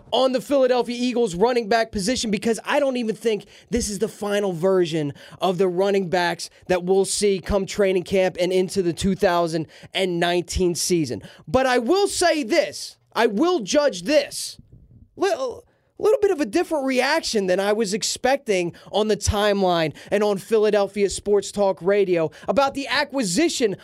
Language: English